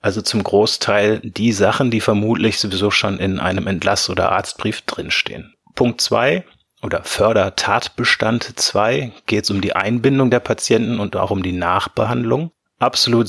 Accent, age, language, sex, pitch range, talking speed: German, 30-49, German, male, 100-120 Hz, 150 wpm